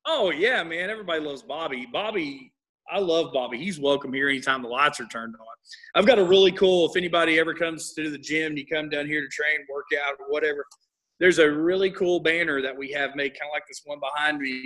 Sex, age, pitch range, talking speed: male, 30-49, 135-165 Hz, 240 wpm